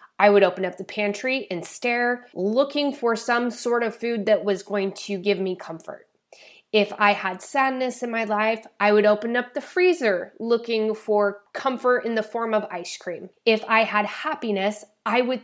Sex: female